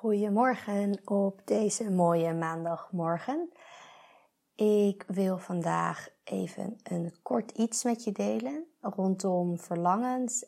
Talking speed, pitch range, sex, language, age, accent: 95 wpm, 180-215 Hz, female, Dutch, 20-39, Dutch